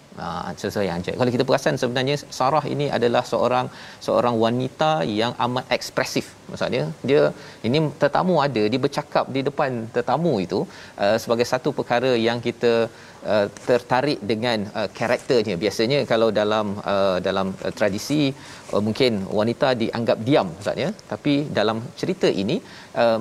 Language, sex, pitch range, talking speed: Malayalam, male, 110-145 Hz, 140 wpm